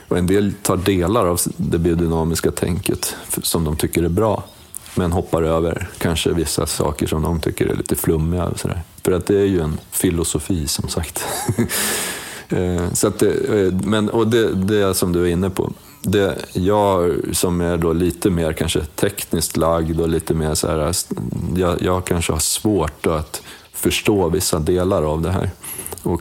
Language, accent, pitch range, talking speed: Swedish, native, 80-100 Hz, 160 wpm